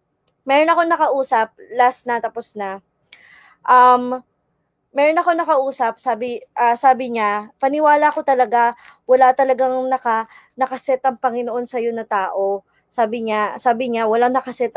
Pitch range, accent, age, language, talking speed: 220-260 Hz, Filipino, 20-39, English, 135 wpm